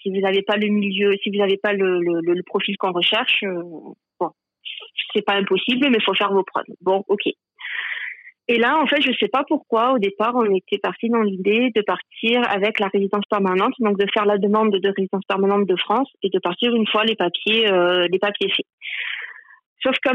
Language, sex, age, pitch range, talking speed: French, female, 30-49, 190-230 Hz, 215 wpm